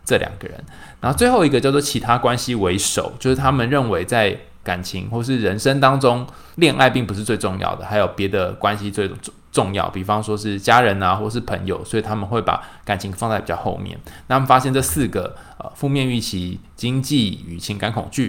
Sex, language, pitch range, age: male, Chinese, 100-130 Hz, 20-39